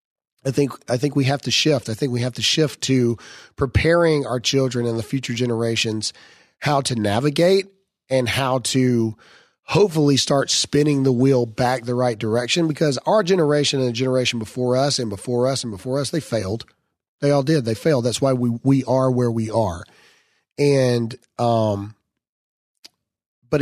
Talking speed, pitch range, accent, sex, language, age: 175 wpm, 115-140 Hz, American, male, English, 40-59